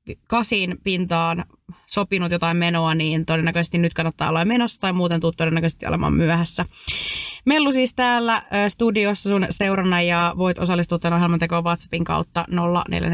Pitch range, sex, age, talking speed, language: 170-210 Hz, female, 20-39, 135 wpm, Finnish